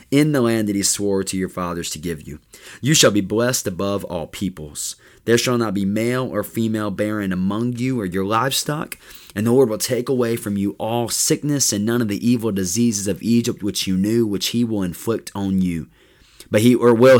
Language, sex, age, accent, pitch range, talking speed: English, male, 20-39, American, 90-115 Hz, 220 wpm